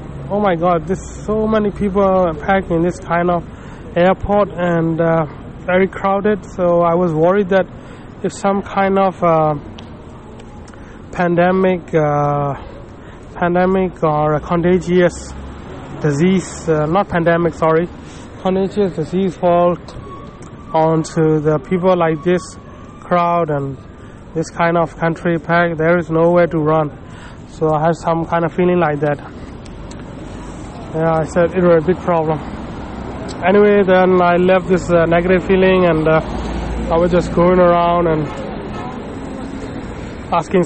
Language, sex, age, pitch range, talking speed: English, male, 20-39, 150-180 Hz, 135 wpm